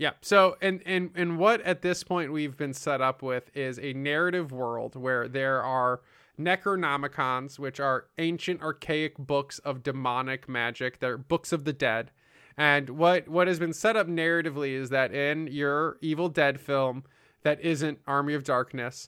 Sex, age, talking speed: male, 20-39, 170 wpm